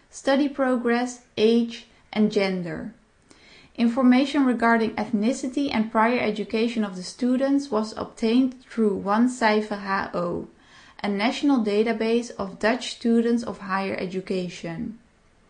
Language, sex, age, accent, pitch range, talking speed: English, female, 20-39, Dutch, 195-245 Hz, 110 wpm